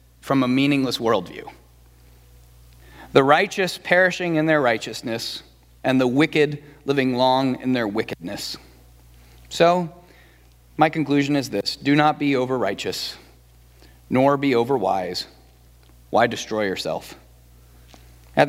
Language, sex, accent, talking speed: English, male, American, 115 wpm